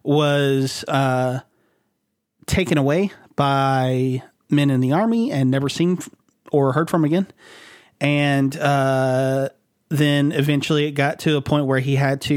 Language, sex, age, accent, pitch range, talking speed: English, male, 30-49, American, 135-155 Hz, 140 wpm